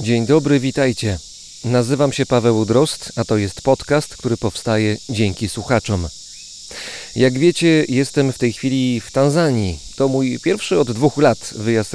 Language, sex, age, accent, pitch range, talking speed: Polish, male, 40-59, native, 105-135 Hz, 150 wpm